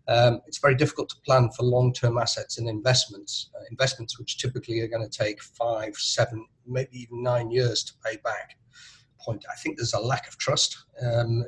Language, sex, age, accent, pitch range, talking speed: English, male, 40-59, British, 115-130 Hz, 195 wpm